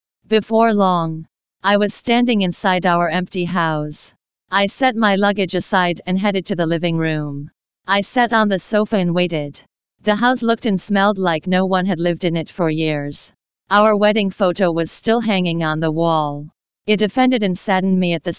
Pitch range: 170-210 Hz